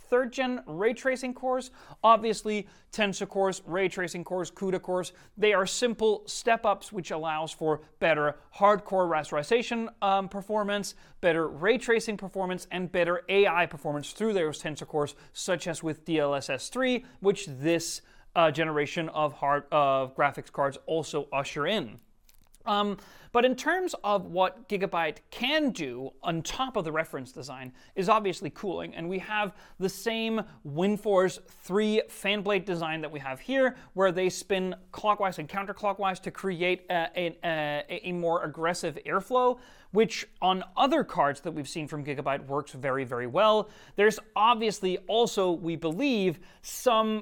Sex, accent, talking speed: male, American, 155 wpm